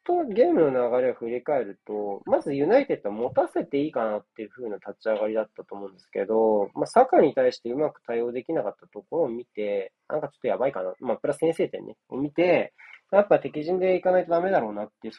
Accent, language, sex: native, Japanese, male